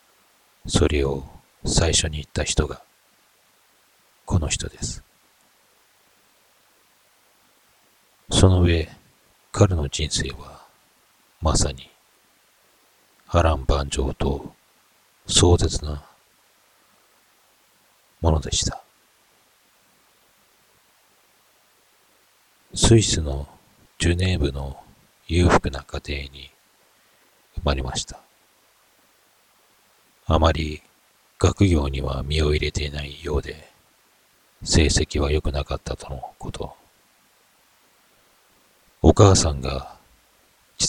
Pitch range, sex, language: 70-85 Hz, male, Japanese